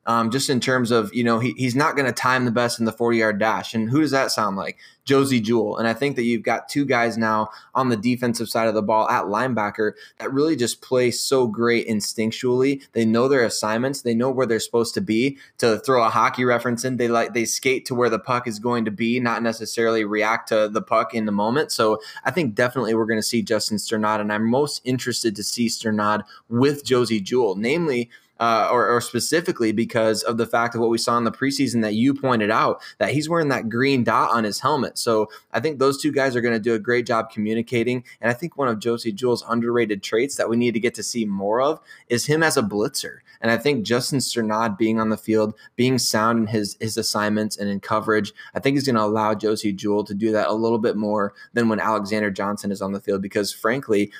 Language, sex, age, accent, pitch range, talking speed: English, male, 20-39, American, 110-125 Hz, 245 wpm